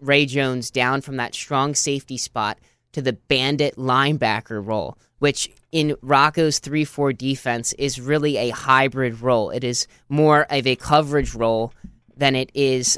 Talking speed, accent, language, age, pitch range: 155 wpm, American, English, 10-29, 125-145 Hz